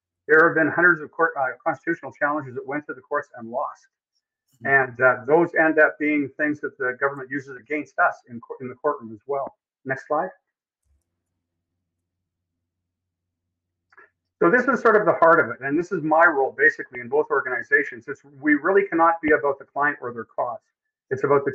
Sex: male